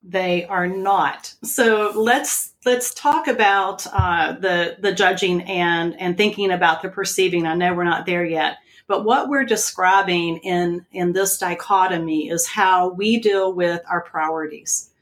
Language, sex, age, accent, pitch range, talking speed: English, female, 40-59, American, 170-195 Hz, 155 wpm